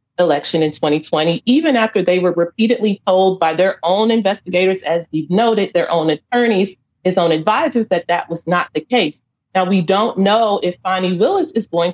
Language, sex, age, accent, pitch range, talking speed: English, female, 30-49, American, 160-210 Hz, 185 wpm